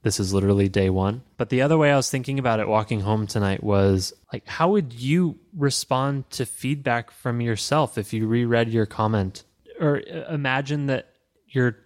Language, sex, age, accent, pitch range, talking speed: English, male, 20-39, American, 110-145 Hz, 185 wpm